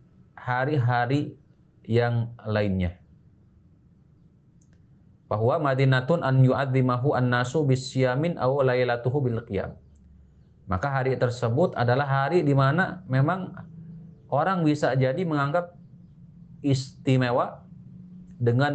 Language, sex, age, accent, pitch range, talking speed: Indonesian, male, 40-59, native, 110-145 Hz, 55 wpm